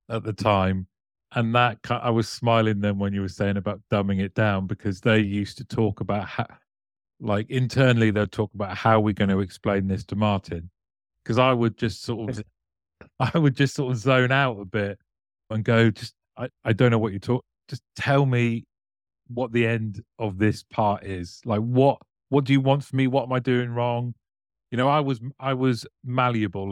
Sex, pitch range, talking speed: male, 100-125 Hz, 205 wpm